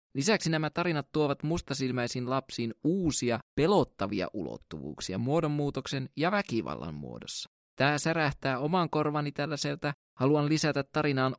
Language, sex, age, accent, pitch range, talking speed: Finnish, male, 20-39, native, 120-175 Hz, 110 wpm